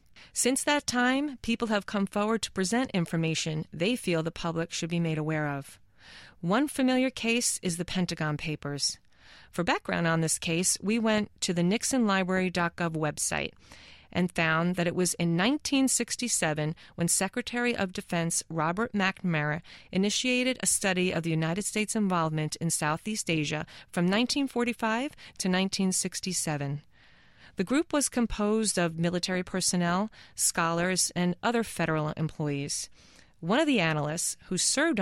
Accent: American